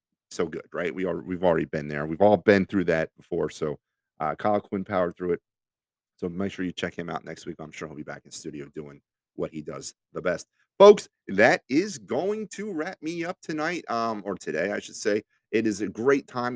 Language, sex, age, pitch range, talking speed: English, male, 30-49, 90-120 Hz, 235 wpm